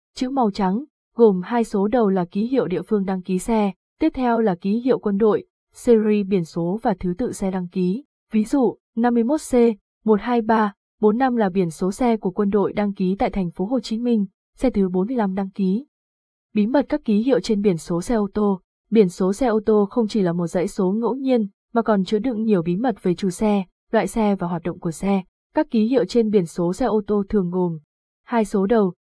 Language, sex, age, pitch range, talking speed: Vietnamese, female, 20-39, 190-230 Hz, 230 wpm